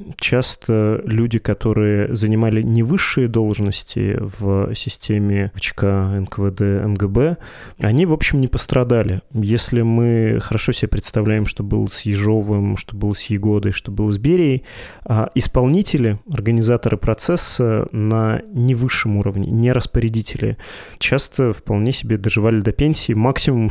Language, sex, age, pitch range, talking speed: Russian, male, 20-39, 110-125 Hz, 125 wpm